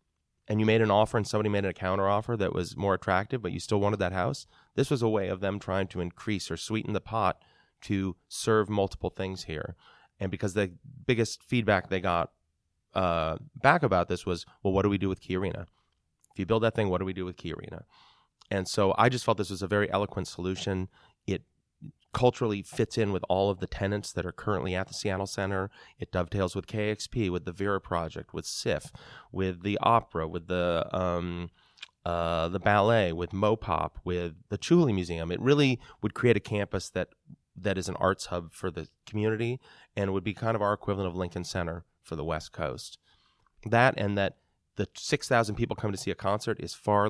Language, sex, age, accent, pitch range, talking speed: English, male, 30-49, American, 90-105 Hz, 210 wpm